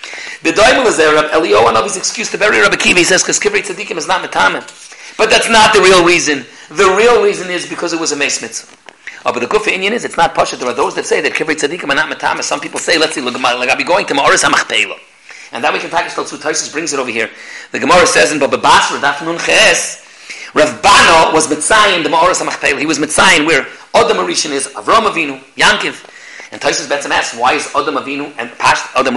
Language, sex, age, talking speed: English, male, 40-59, 245 wpm